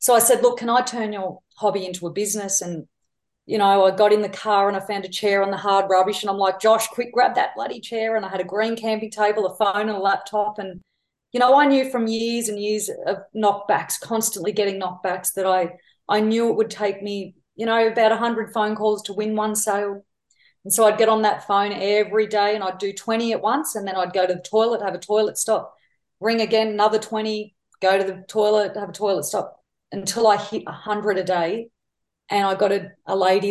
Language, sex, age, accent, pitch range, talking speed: English, female, 30-49, Australian, 185-215 Hz, 235 wpm